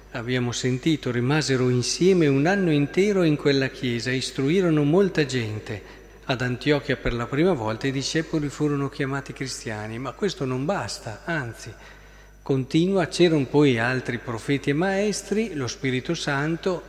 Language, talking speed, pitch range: Italian, 140 wpm, 125-155 Hz